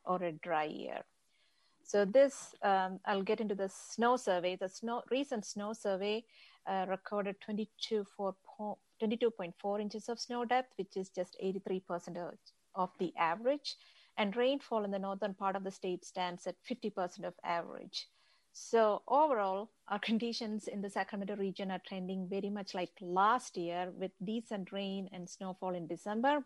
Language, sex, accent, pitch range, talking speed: English, female, Indian, 185-220 Hz, 160 wpm